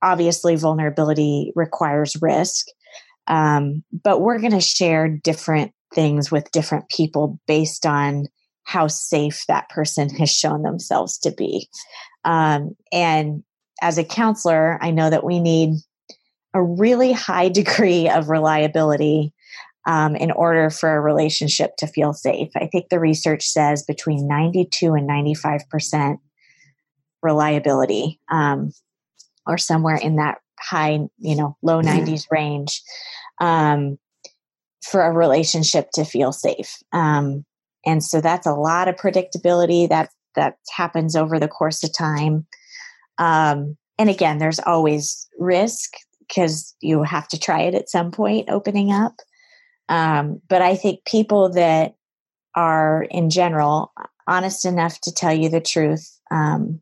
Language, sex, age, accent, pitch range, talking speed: English, female, 20-39, American, 150-175 Hz, 135 wpm